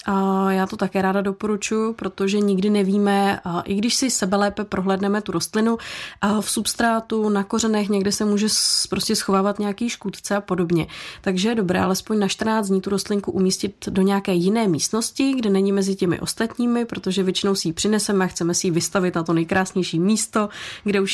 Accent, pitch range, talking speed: native, 185-205 Hz, 185 wpm